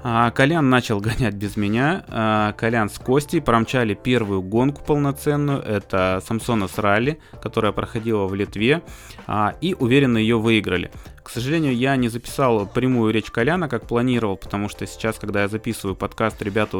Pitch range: 100-120 Hz